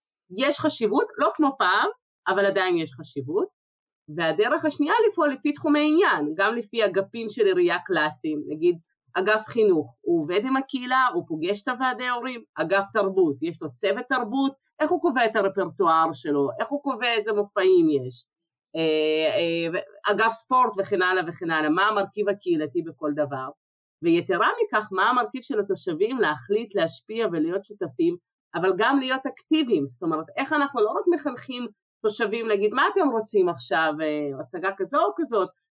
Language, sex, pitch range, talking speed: Hebrew, female, 180-295 Hz, 155 wpm